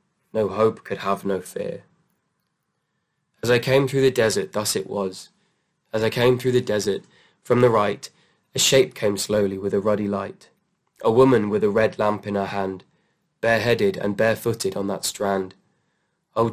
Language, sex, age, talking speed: English, male, 20-39, 175 wpm